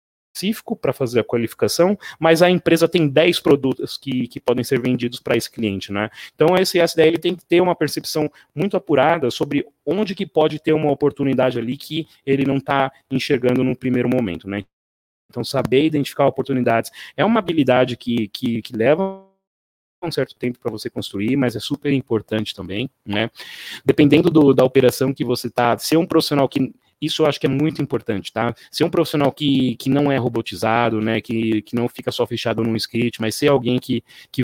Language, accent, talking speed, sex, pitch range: Portuguese, Brazilian, 195 wpm, male, 120-155 Hz